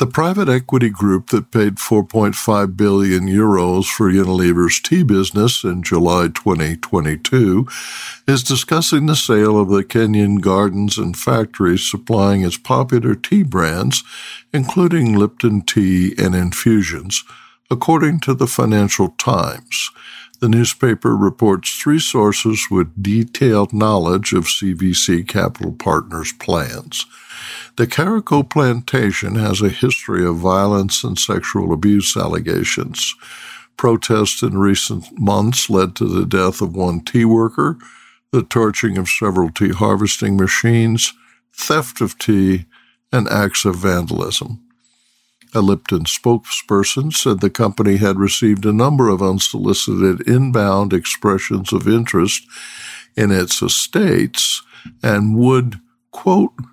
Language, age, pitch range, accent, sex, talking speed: English, 60-79, 95-120 Hz, American, male, 120 wpm